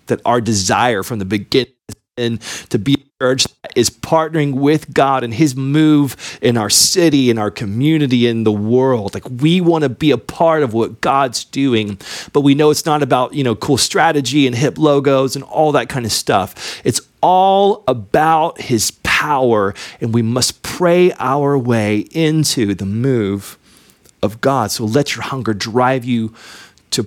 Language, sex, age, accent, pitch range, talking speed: English, male, 30-49, American, 115-150 Hz, 175 wpm